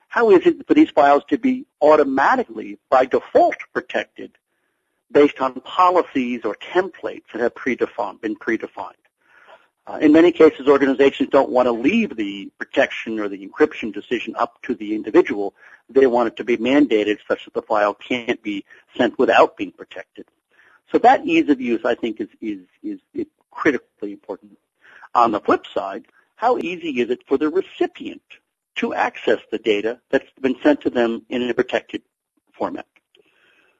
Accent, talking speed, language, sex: American, 165 wpm, English, male